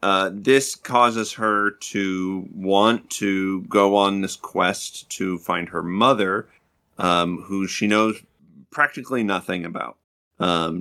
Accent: American